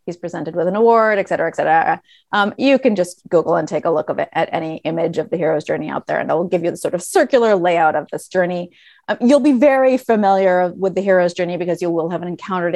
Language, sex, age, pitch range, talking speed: English, female, 30-49, 175-245 Hz, 250 wpm